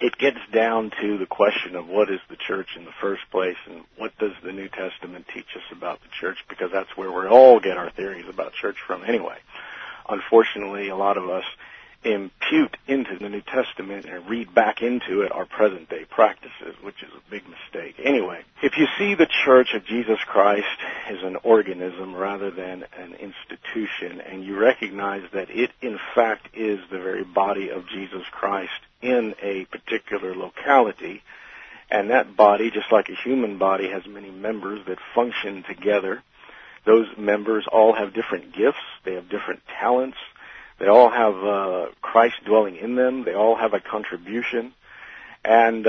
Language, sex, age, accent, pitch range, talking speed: English, male, 50-69, American, 95-115 Hz, 175 wpm